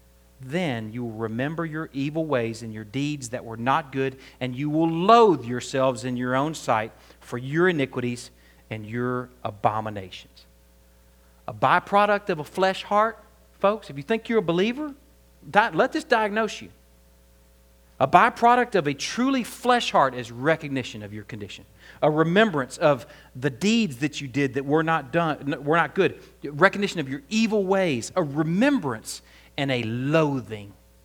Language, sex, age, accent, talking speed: English, male, 40-59, American, 160 wpm